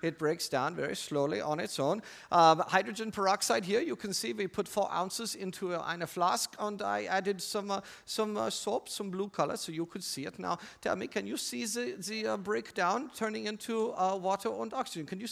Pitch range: 190-295 Hz